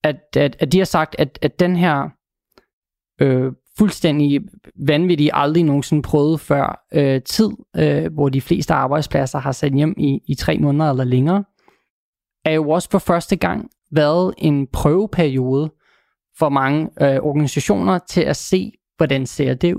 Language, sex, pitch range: Danish, male, 140-170 Hz